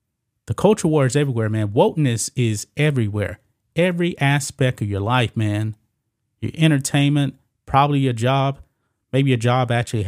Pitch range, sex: 110-140 Hz, male